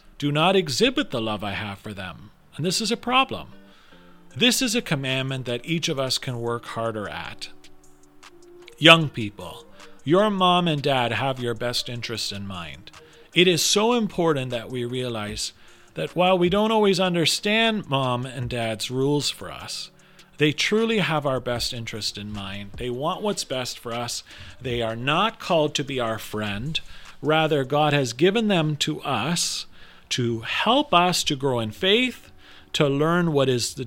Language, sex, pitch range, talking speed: English, male, 115-180 Hz, 175 wpm